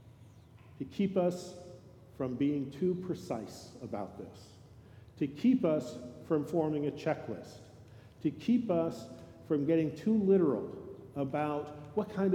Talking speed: 125 wpm